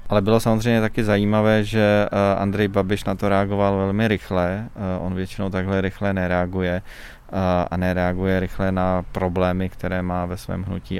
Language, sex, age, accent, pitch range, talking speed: Czech, male, 20-39, native, 90-95 Hz, 155 wpm